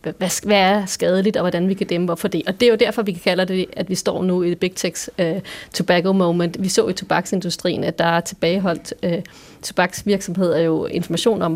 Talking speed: 220 wpm